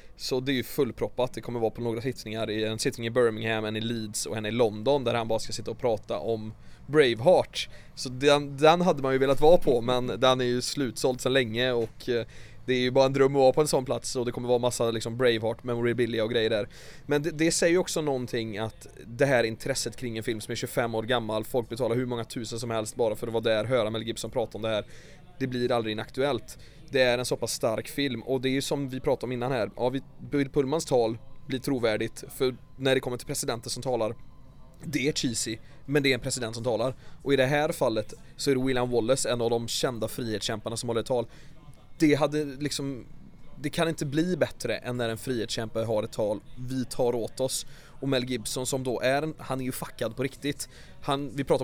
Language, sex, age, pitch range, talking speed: English, male, 20-39, 115-140 Hz, 240 wpm